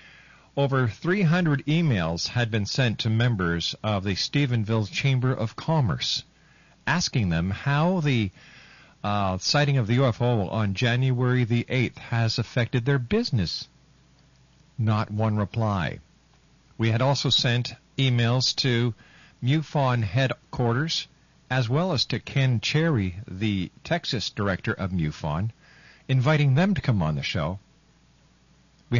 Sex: male